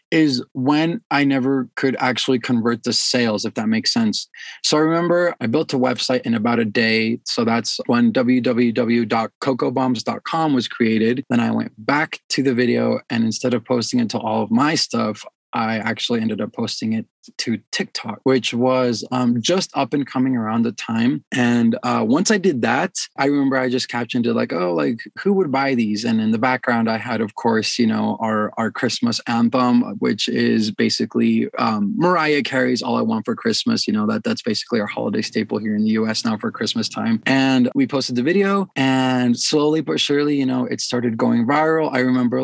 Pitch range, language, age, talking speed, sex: 120-155 Hz, English, 20-39, 200 wpm, male